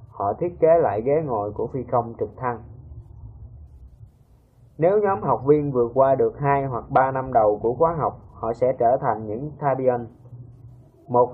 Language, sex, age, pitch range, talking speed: Vietnamese, male, 20-39, 120-145 Hz, 175 wpm